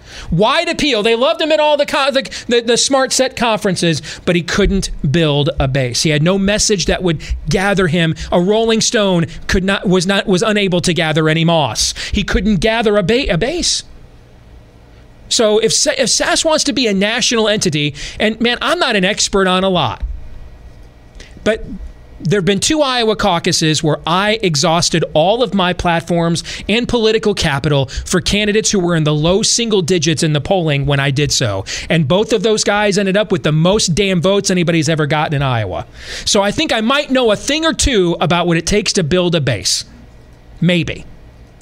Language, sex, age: English, male, 40-59